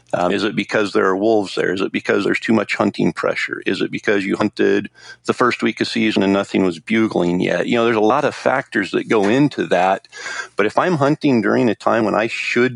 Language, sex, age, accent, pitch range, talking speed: English, male, 40-59, American, 90-110 Hz, 245 wpm